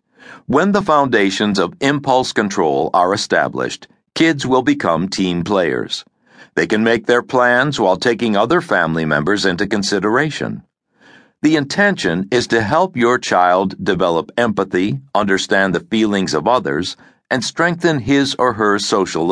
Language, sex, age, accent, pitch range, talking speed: English, male, 60-79, American, 100-140 Hz, 140 wpm